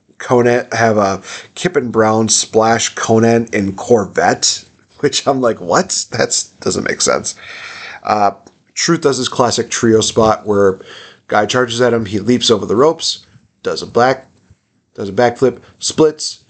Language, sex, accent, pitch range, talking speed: English, male, American, 110-130 Hz, 145 wpm